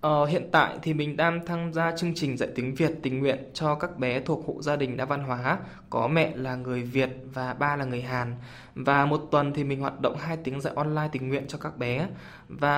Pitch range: 130-155 Hz